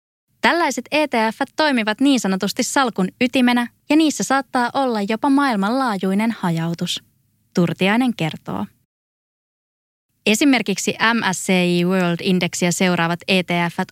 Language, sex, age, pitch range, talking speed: Finnish, female, 20-39, 175-230 Hz, 95 wpm